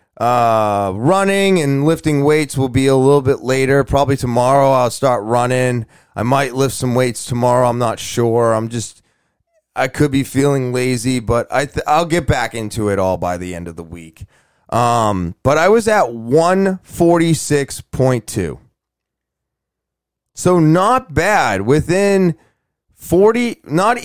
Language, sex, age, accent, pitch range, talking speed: English, male, 30-49, American, 110-150 Hz, 145 wpm